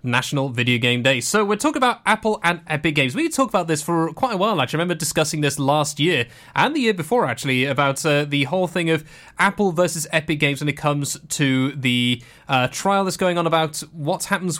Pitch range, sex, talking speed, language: 140-190 Hz, male, 230 wpm, English